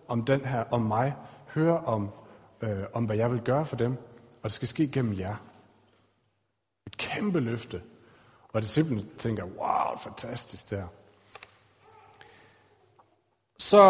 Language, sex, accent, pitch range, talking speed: Danish, male, native, 110-160 Hz, 140 wpm